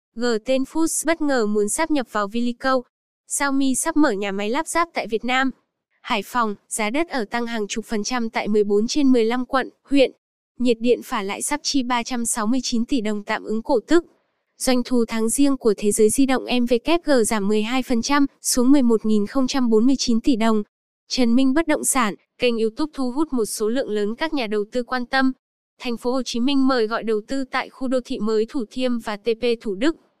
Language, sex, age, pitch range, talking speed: Vietnamese, female, 10-29, 225-270 Hz, 205 wpm